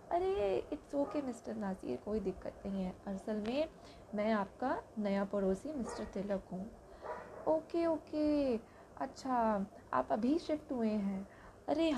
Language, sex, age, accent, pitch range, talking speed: Hindi, female, 20-39, native, 225-300 Hz, 140 wpm